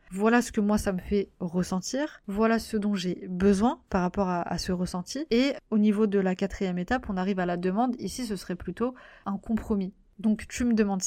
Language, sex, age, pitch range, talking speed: French, female, 30-49, 195-235 Hz, 220 wpm